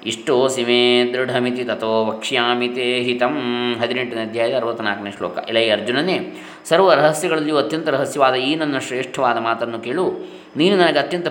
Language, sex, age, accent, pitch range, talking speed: Kannada, male, 20-39, native, 120-160 Hz, 125 wpm